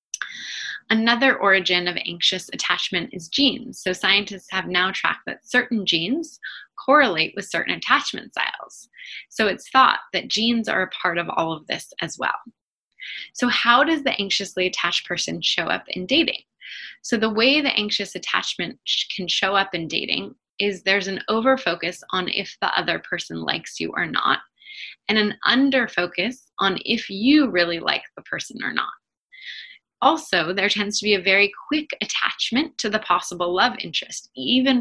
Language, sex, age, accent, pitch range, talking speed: English, female, 20-39, American, 180-250 Hz, 165 wpm